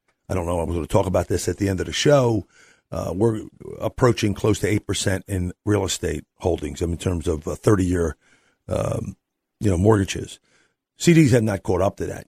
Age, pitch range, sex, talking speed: 50-69, 95-120 Hz, male, 215 wpm